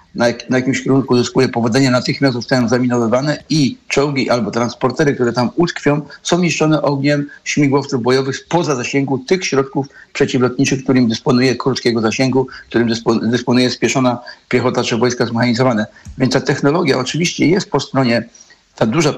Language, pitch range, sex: Polish, 125-140 Hz, male